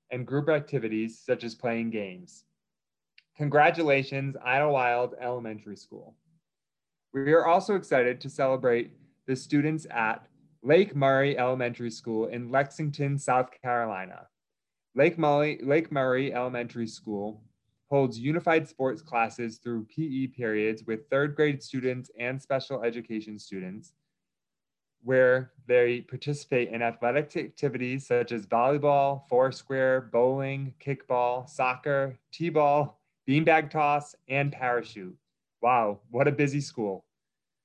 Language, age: English, 20-39